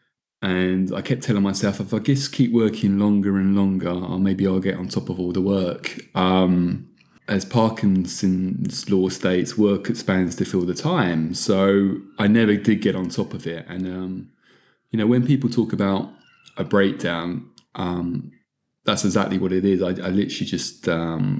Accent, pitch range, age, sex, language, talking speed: British, 95-115 Hz, 20-39, male, English, 180 wpm